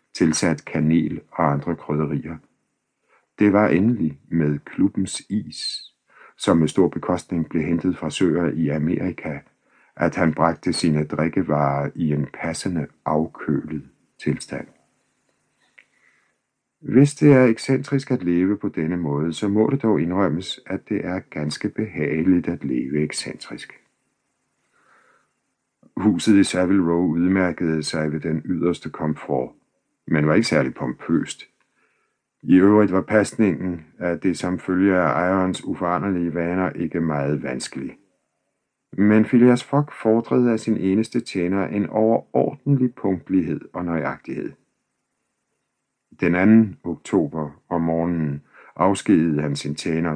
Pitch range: 80-100 Hz